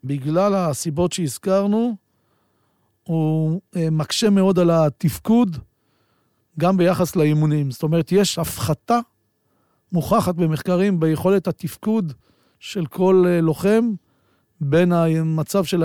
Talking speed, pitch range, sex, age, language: 95 wpm, 150-180 Hz, male, 50-69, Hebrew